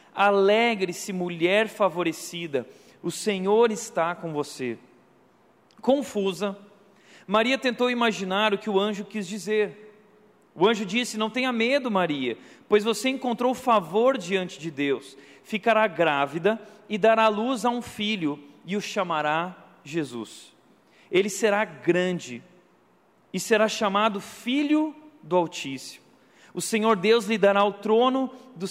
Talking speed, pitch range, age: 130 wpm, 185-230 Hz, 40-59